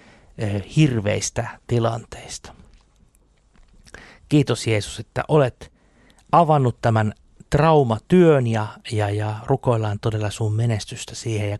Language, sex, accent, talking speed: Finnish, male, native, 95 wpm